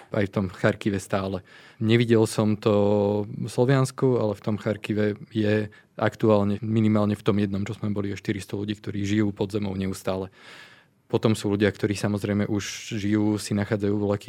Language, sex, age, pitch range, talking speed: Slovak, male, 20-39, 105-110 Hz, 170 wpm